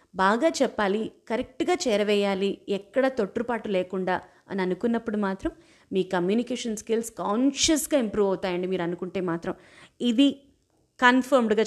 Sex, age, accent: female, 30-49, native